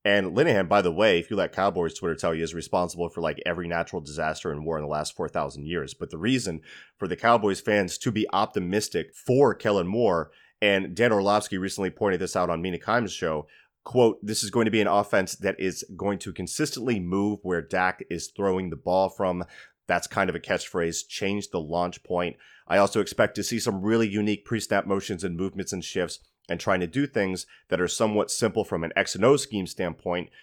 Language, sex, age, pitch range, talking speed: English, male, 30-49, 90-110 Hz, 215 wpm